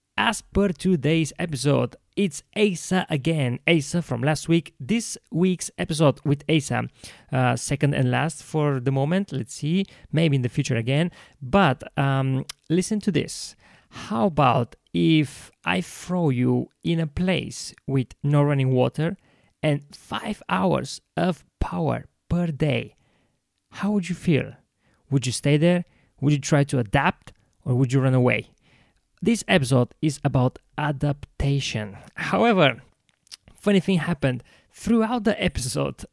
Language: English